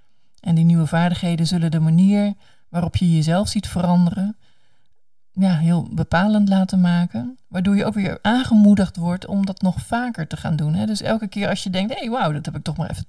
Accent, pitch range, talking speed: Dutch, 165-195 Hz, 205 wpm